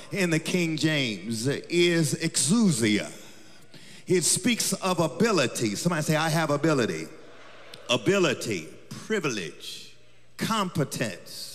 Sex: male